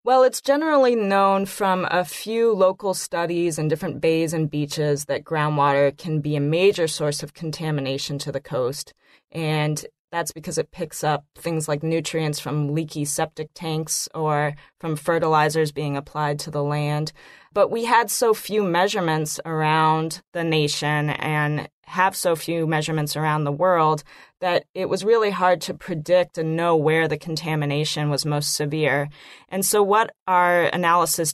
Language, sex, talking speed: English, female, 160 wpm